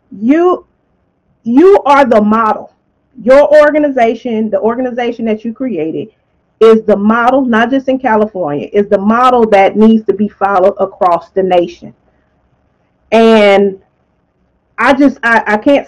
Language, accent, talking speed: English, American, 135 wpm